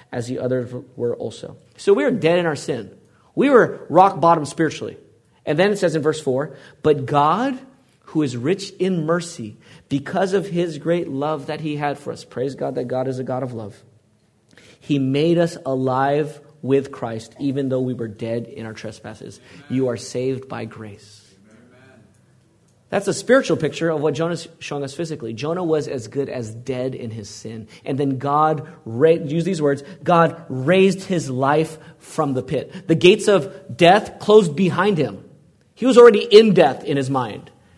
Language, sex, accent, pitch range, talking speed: English, male, American, 120-165 Hz, 185 wpm